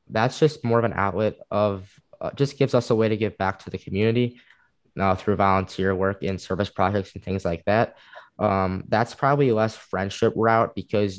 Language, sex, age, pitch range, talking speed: English, male, 10-29, 95-110 Hz, 200 wpm